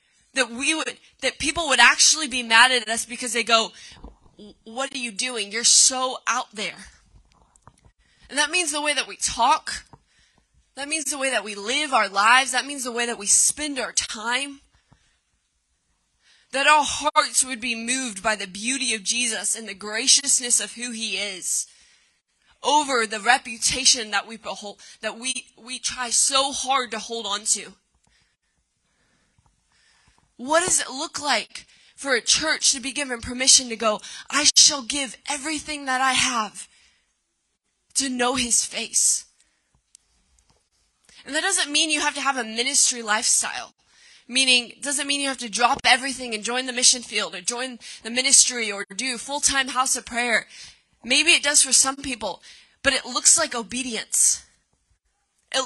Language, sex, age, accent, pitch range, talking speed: English, female, 20-39, American, 230-275 Hz, 165 wpm